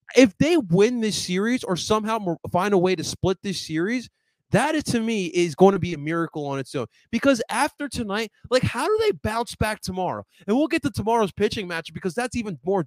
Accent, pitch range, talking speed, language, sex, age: American, 170-230 Hz, 225 wpm, English, male, 20-39